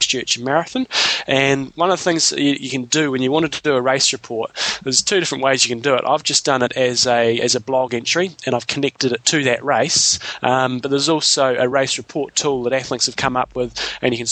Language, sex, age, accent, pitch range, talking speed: English, male, 20-39, Australian, 120-140 Hz, 265 wpm